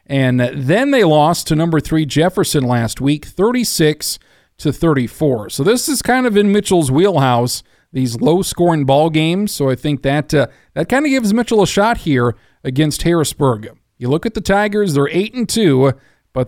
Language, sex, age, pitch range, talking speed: English, male, 40-59, 130-170 Hz, 185 wpm